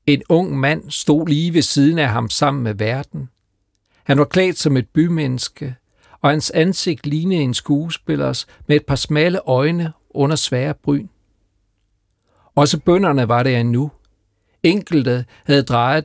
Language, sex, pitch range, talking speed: Danish, male, 115-160 Hz, 150 wpm